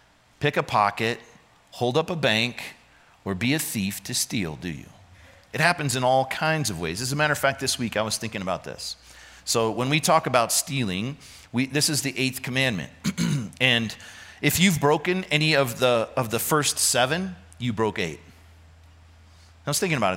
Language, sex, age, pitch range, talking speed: English, male, 40-59, 100-150 Hz, 190 wpm